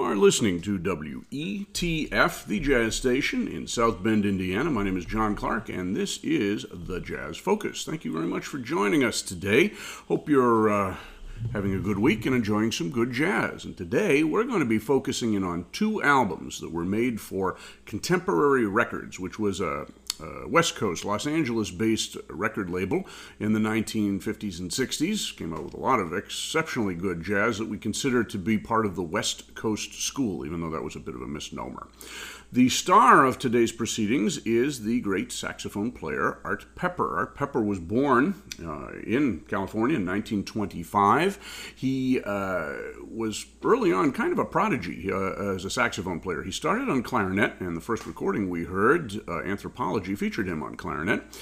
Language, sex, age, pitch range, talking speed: English, male, 50-69, 95-120 Hz, 180 wpm